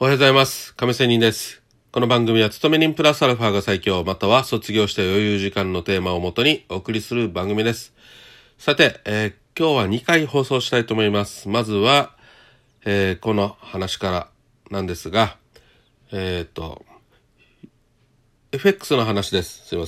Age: 40-59